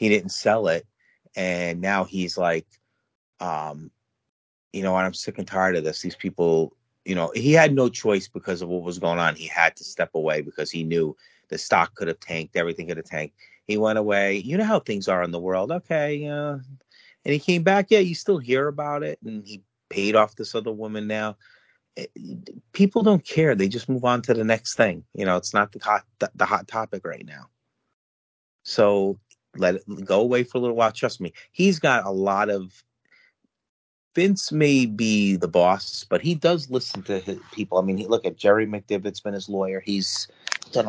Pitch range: 95-120 Hz